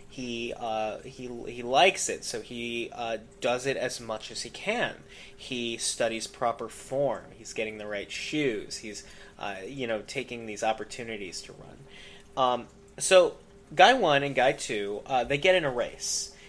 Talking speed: 170 wpm